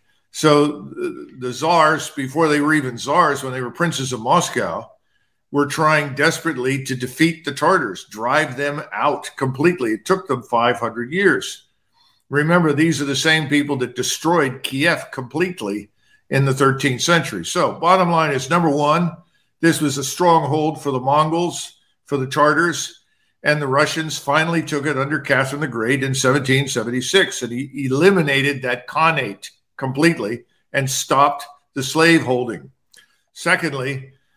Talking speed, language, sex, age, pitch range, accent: 145 wpm, English, male, 50-69, 130-160 Hz, American